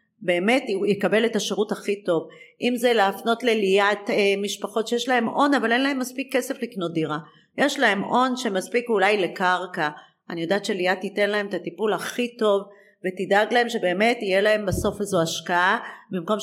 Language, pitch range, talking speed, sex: Hebrew, 190-225 Hz, 170 wpm, female